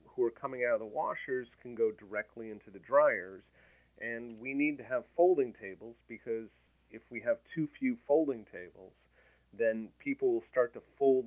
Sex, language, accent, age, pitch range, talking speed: male, English, American, 40-59, 110-150 Hz, 180 wpm